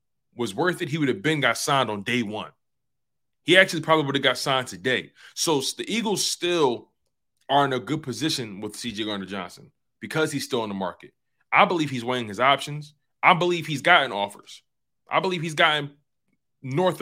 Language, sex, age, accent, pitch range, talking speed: English, male, 20-39, American, 115-155 Hz, 195 wpm